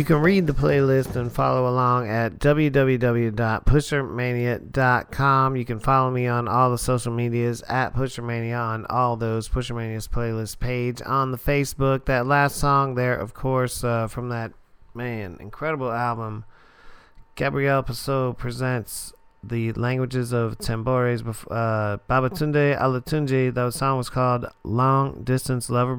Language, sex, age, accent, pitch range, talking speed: English, male, 40-59, American, 115-135 Hz, 135 wpm